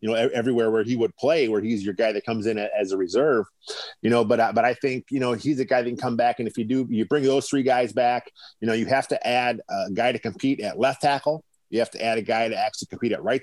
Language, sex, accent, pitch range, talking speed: English, male, American, 110-130 Hz, 295 wpm